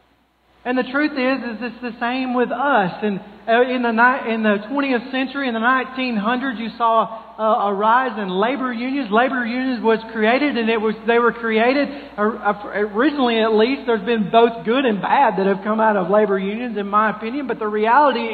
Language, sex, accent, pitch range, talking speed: English, male, American, 200-240 Hz, 205 wpm